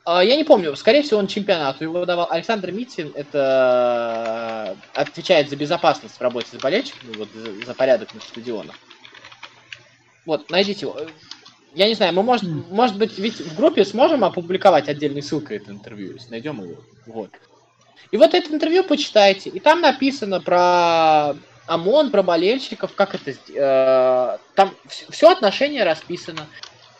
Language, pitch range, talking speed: Russian, 130-200 Hz, 140 wpm